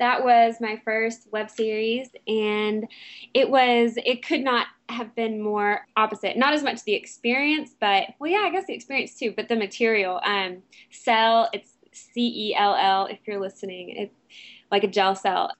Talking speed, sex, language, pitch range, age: 180 wpm, female, English, 200-240 Hz, 20-39